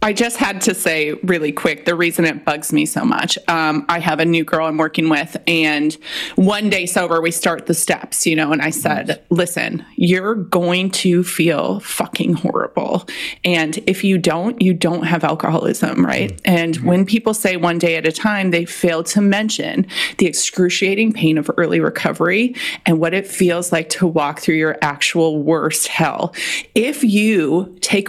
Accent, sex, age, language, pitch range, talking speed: American, female, 30-49, English, 165-205 Hz, 185 wpm